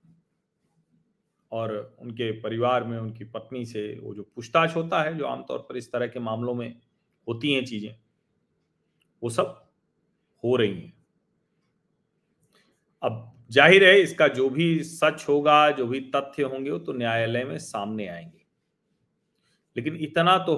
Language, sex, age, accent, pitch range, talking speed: Hindi, male, 40-59, native, 125-170 Hz, 145 wpm